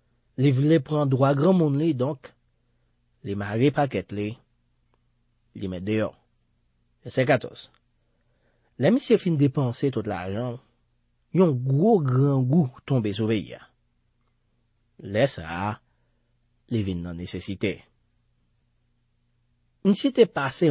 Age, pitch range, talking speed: 40-59, 120-165 Hz, 125 wpm